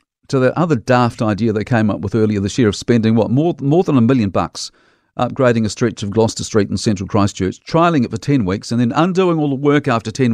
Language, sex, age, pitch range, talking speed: English, male, 50-69, 105-140 Hz, 250 wpm